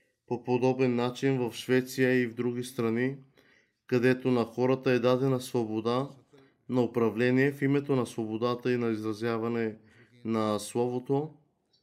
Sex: male